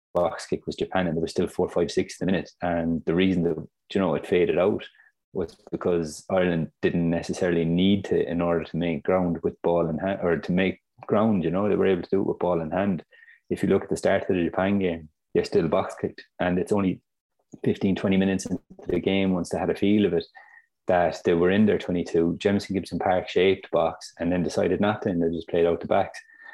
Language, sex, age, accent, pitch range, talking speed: English, male, 20-39, Irish, 85-95 Hz, 240 wpm